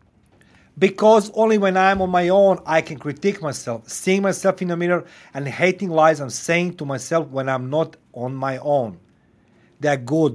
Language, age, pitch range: English, 40-59, 110-160 Hz